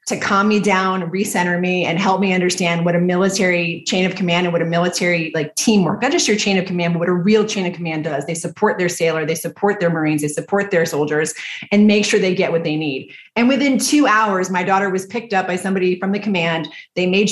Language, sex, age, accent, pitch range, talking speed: English, female, 30-49, American, 170-205 Hz, 250 wpm